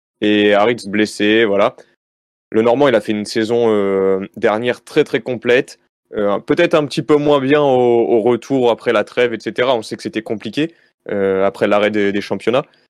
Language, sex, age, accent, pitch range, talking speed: French, male, 20-39, French, 105-130 Hz, 190 wpm